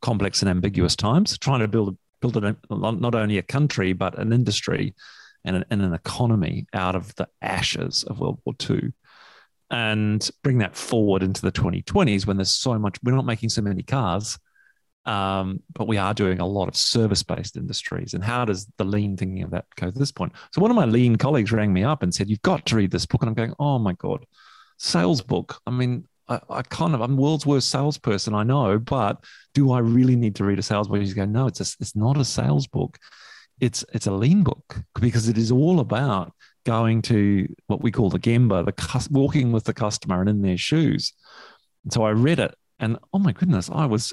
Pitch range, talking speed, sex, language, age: 100-130 Hz, 220 wpm, male, English, 40-59